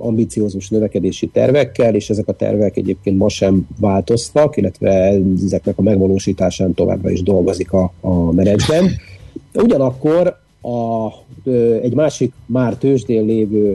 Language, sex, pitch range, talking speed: Hungarian, male, 100-125 Hz, 120 wpm